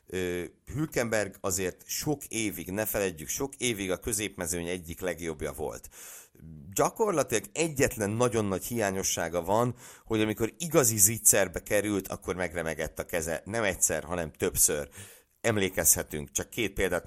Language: Hungarian